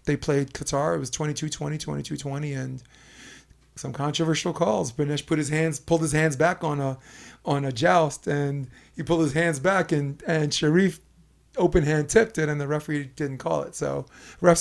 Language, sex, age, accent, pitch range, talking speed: English, male, 30-49, American, 135-155 Hz, 185 wpm